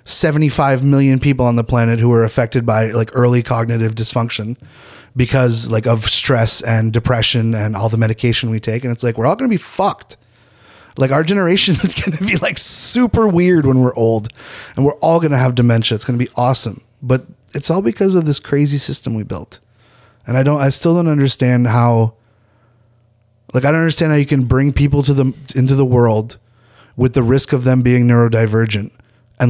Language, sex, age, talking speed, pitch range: French, male, 30-49, 200 wpm, 115-140 Hz